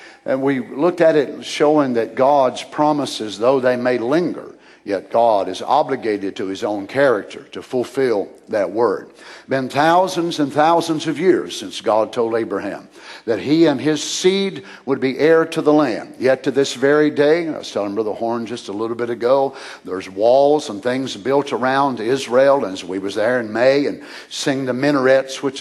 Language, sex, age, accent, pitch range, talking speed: English, male, 60-79, American, 120-155 Hz, 185 wpm